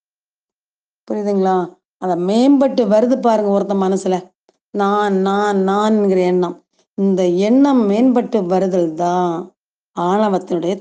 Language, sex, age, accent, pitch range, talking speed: Tamil, female, 30-49, native, 190-245 Hz, 95 wpm